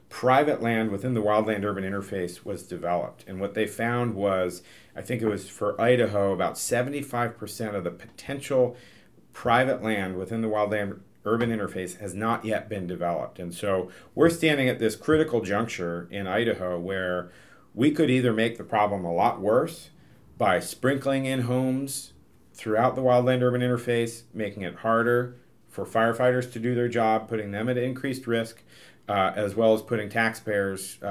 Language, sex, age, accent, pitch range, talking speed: English, male, 40-59, American, 100-120 Hz, 165 wpm